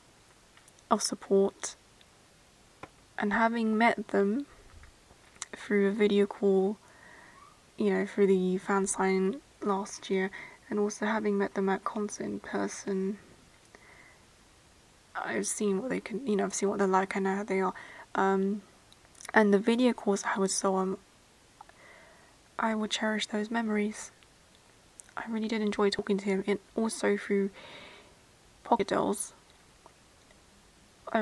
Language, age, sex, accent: English, 20-39, female, British